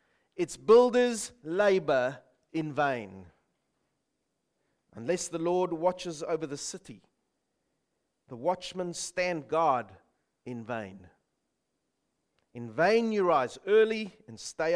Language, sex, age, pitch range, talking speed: English, male, 40-59, 130-205 Hz, 100 wpm